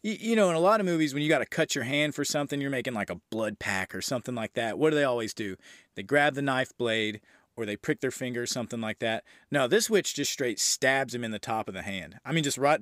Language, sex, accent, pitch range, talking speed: English, male, American, 110-140 Hz, 285 wpm